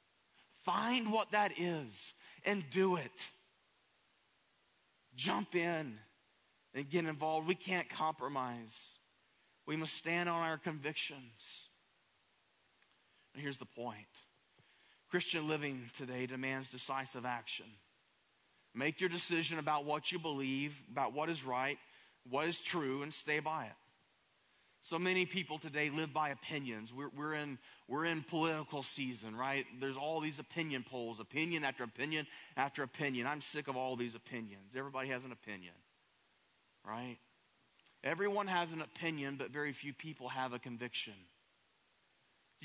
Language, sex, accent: English, male, American